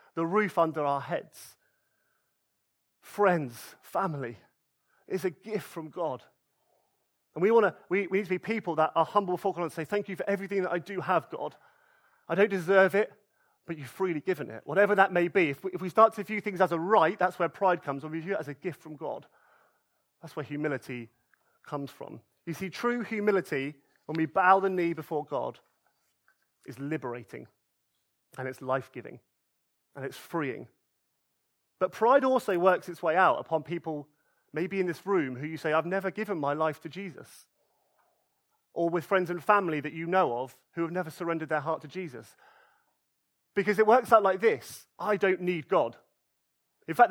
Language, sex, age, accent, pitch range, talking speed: English, male, 30-49, British, 155-205 Hz, 190 wpm